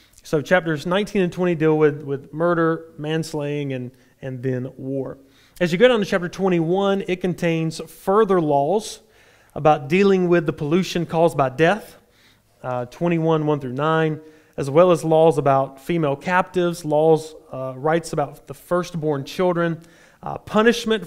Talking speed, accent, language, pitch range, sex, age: 155 wpm, American, English, 135-175 Hz, male, 30-49